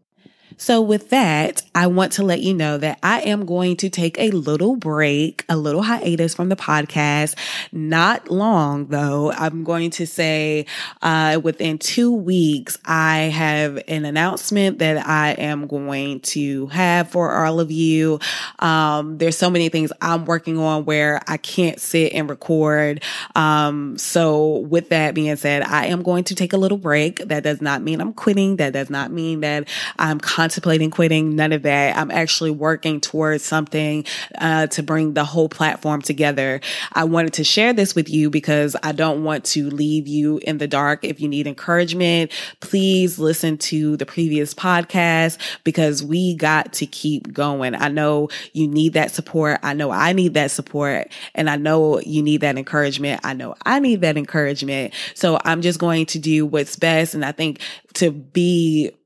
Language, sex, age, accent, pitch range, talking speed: English, female, 20-39, American, 150-170 Hz, 180 wpm